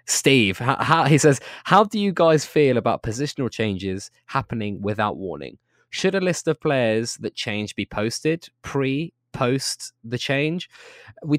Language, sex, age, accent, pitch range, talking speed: English, male, 20-39, British, 105-135 Hz, 140 wpm